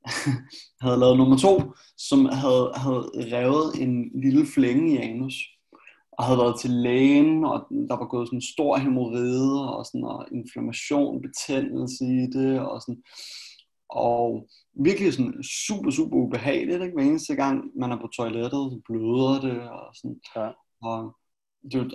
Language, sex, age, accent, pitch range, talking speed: Danish, male, 20-39, native, 125-190 Hz, 155 wpm